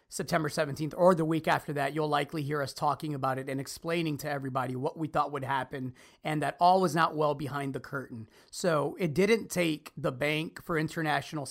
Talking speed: 210 wpm